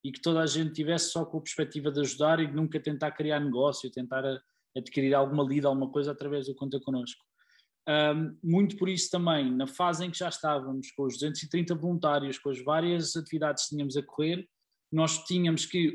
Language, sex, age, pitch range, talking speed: Portuguese, male, 20-39, 150-175 Hz, 195 wpm